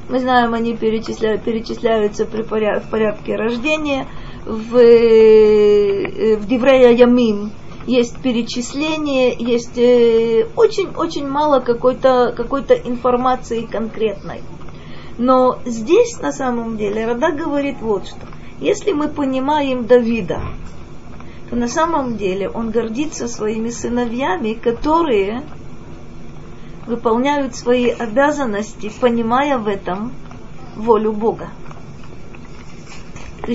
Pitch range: 225-270 Hz